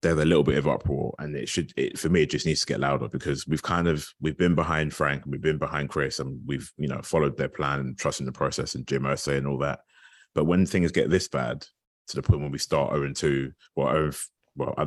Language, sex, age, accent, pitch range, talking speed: English, male, 30-49, British, 70-95 Hz, 260 wpm